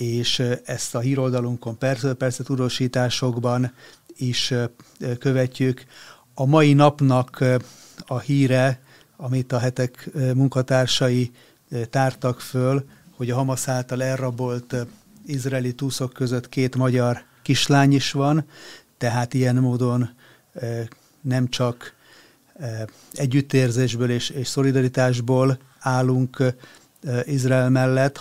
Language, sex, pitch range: Hungarian, male, 120-135 Hz